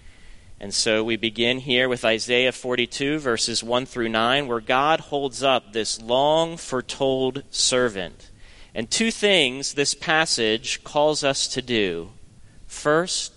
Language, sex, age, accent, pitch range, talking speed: English, male, 30-49, American, 110-155 Hz, 130 wpm